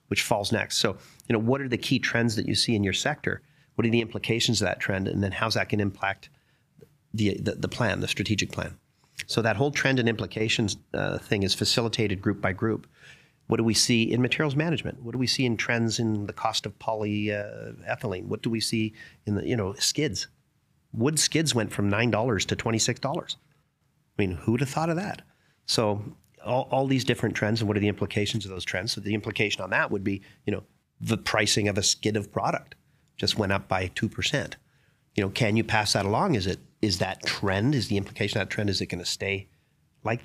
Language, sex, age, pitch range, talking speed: English, male, 40-59, 105-130 Hz, 225 wpm